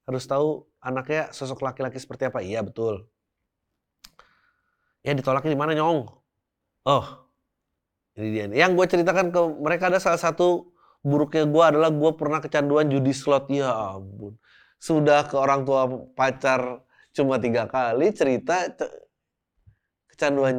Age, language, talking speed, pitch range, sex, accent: 20-39, Indonesian, 130 wpm, 125-150 Hz, male, native